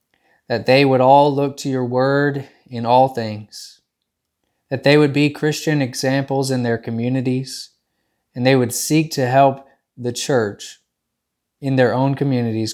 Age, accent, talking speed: 20-39, American, 150 wpm